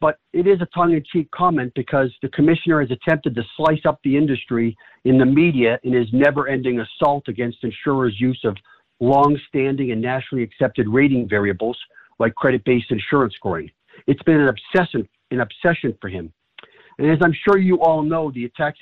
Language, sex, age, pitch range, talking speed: English, male, 50-69, 120-150 Hz, 170 wpm